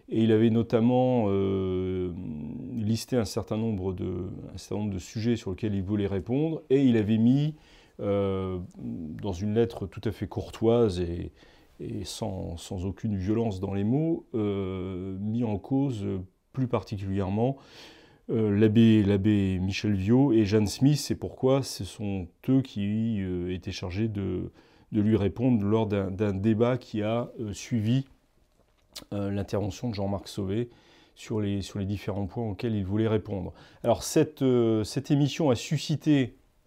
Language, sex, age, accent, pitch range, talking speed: French, male, 30-49, French, 100-125 Hz, 155 wpm